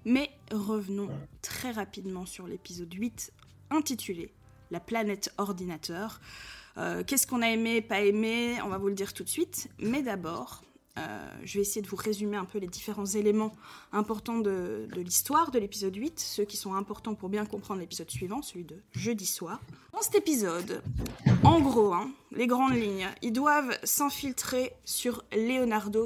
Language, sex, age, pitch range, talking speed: French, female, 20-39, 195-235 Hz, 170 wpm